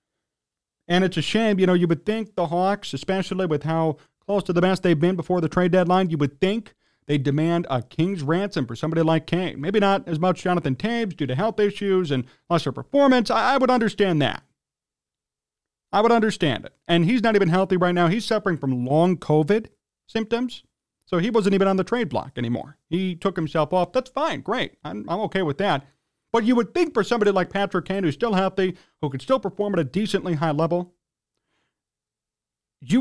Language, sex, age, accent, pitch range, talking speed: English, male, 40-59, American, 150-195 Hz, 205 wpm